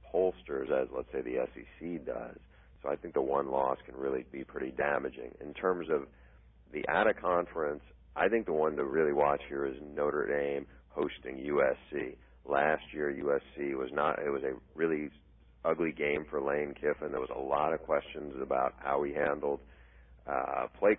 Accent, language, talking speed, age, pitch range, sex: American, English, 185 wpm, 40-59, 70-80 Hz, male